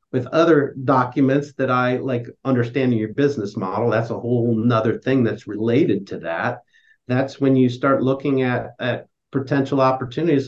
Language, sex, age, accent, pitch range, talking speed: English, male, 50-69, American, 120-145 Hz, 160 wpm